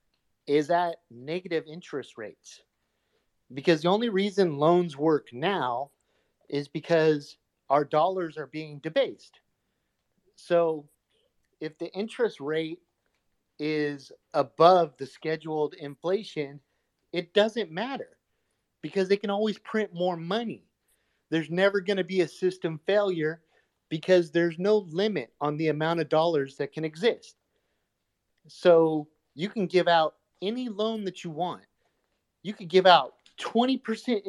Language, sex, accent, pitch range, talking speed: English, male, American, 150-195 Hz, 130 wpm